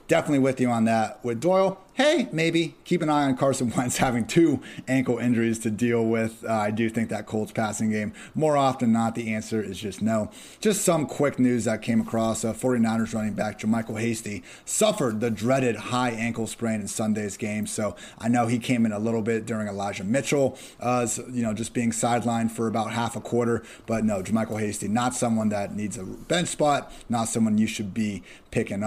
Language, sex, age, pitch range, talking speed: English, male, 30-49, 115-135 Hz, 210 wpm